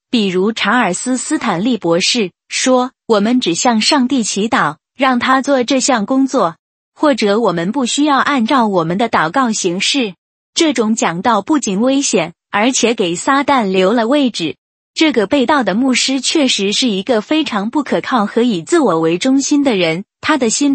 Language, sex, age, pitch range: Chinese, female, 20-39, 205-275 Hz